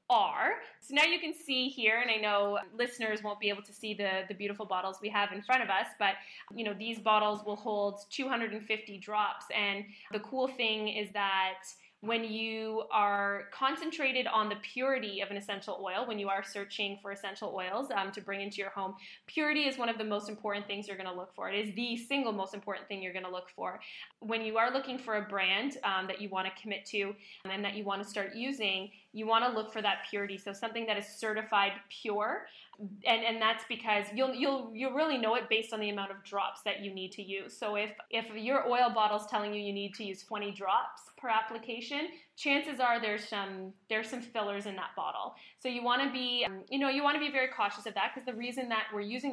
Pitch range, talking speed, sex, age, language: 200-230 Hz, 230 wpm, female, 20-39, English